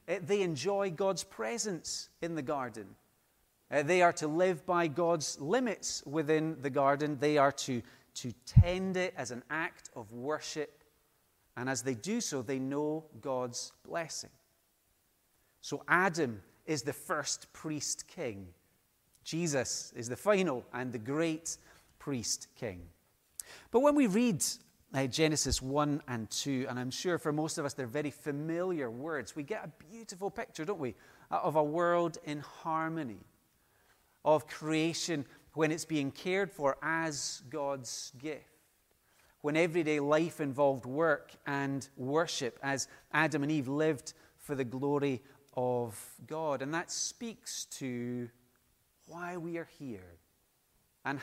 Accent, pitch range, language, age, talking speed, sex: British, 130-165 Hz, English, 30-49, 145 wpm, male